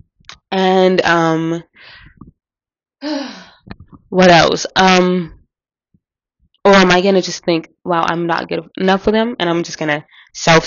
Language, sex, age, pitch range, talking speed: English, female, 20-39, 160-195 Hz, 130 wpm